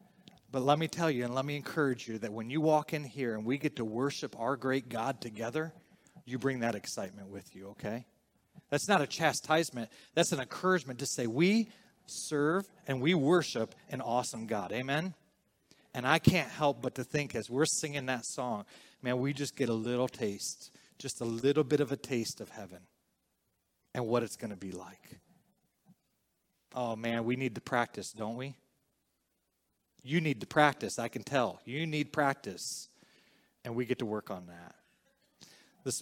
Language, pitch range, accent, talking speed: English, 115-145 Hz, American, 185 wpm